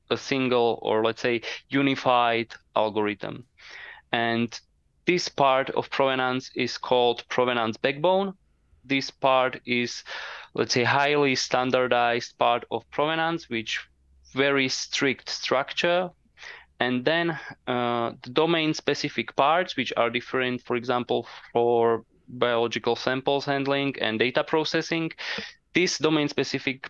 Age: 20-39